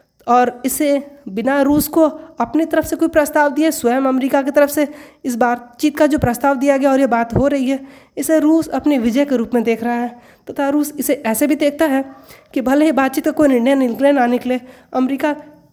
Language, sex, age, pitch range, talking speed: Hindi, female, 20-39, 250-290 Hz, 225 wpm